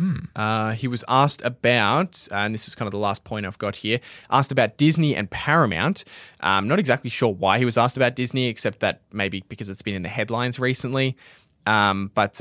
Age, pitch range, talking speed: 20-39, 100-125 Hz, 215 wpm